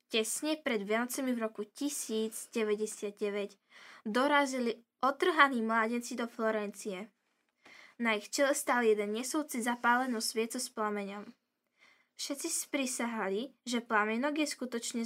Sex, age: female, 10-29